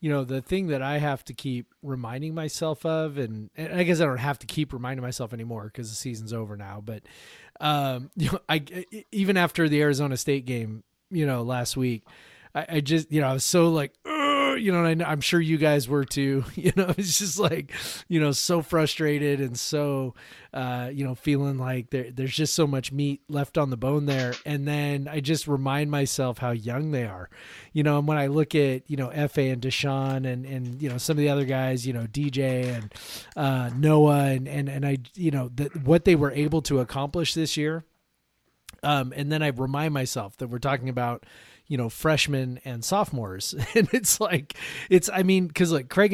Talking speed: 215 wpm